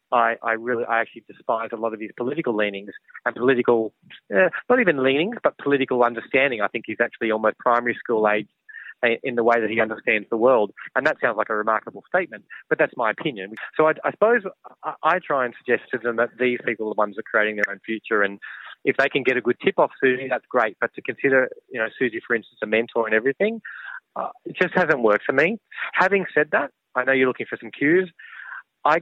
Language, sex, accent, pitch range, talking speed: English, male, Australian, 110-130 Hz, 230 wpm